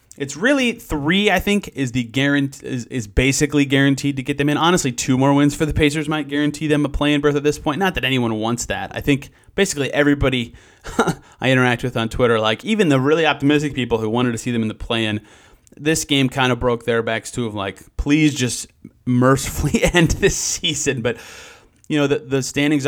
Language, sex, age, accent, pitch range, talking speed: English, male, 30-49, American, 120-150 Hz, 215 wpm